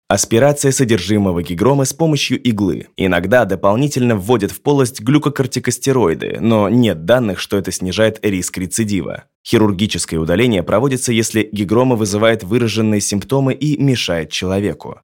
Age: 20-39